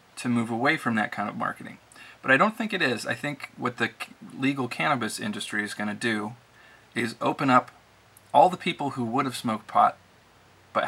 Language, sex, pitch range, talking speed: English, male, 110-125 Hz, 200 wpm